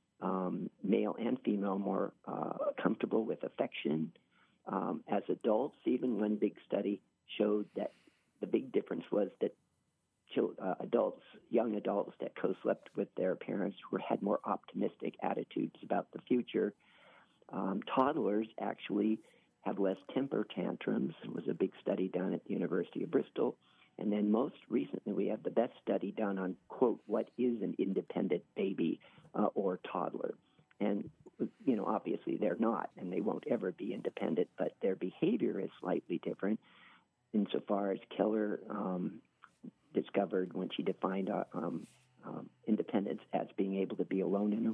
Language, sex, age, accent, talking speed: English, male, 50-69, American, 155 wpm